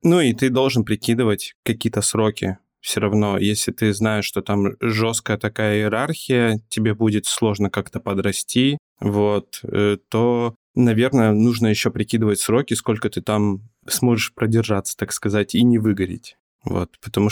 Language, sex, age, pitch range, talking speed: Russian, male, 20-39, 100-120 Hz, 140 wpm